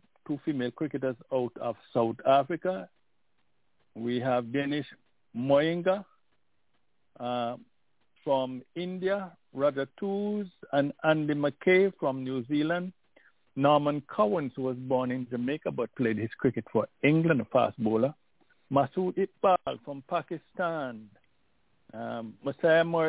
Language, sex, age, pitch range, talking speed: English, male, 60-79, 120-165 Hz, 110 wpm